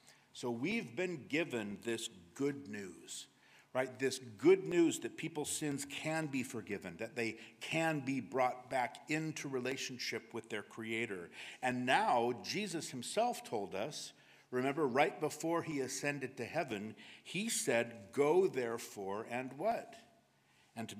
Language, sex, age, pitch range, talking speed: English, male, 50-69, 115-150 Hz, 140 wpm